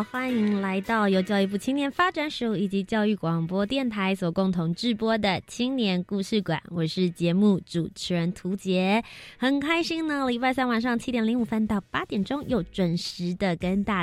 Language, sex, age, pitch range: Chinese, female, 20-39, 180-240 Hz